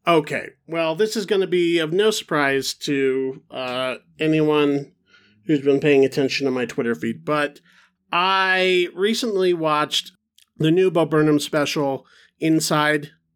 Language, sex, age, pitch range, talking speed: English, male, 40-59, 135-175 Hz, 140 wpm